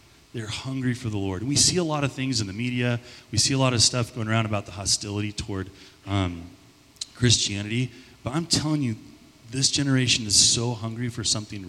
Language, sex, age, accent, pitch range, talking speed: English, male, 30-49, American, 100-130 Hz, 205 wpm